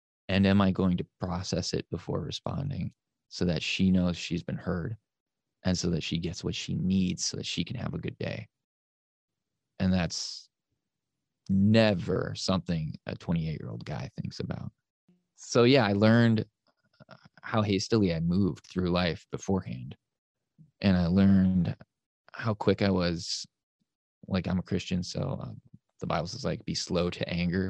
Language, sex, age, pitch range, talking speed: English, male, 20-39, 90-100 Hz, 160 wpm